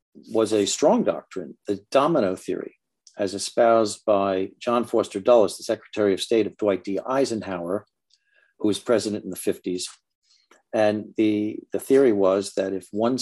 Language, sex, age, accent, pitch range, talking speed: English, male, 50-69, American, 95-115 Hz, 160 wpm